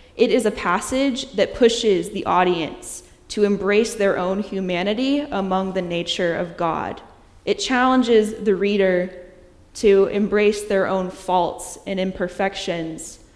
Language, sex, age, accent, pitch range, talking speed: English, female, 10-29, American, 180-215 Hz, 130 wpm